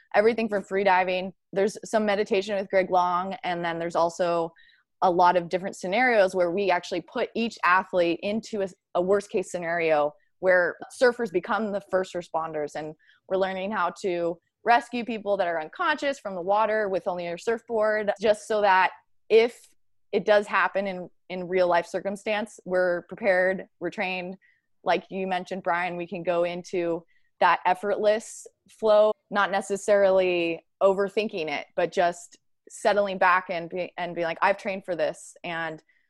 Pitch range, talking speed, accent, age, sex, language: 175-210 Hz, 165 wpm, American, 20-39, female, English